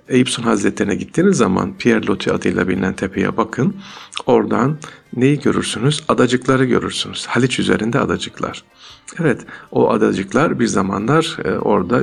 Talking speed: 120 wpm